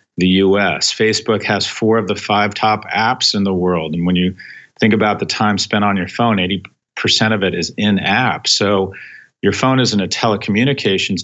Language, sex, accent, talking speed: Dutch, male, American, 190 wpm